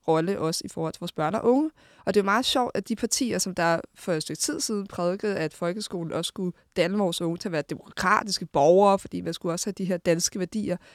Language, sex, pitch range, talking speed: Danish, female, 170-215 Hz, 250 wpm